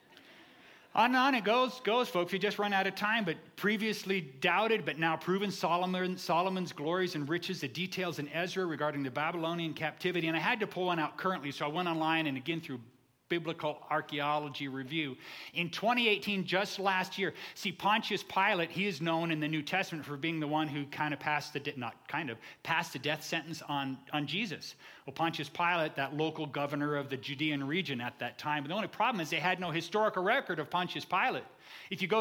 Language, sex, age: English, male, 40-59